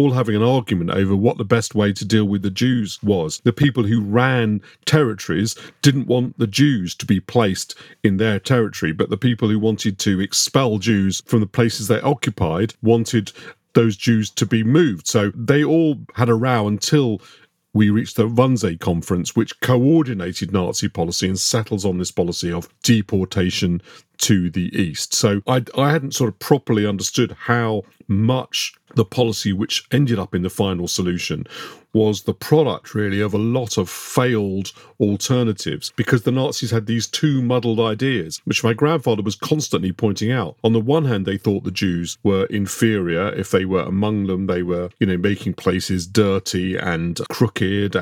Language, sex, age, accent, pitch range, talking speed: English, male, 50-69, British, 95-120 Hz, 180 wpm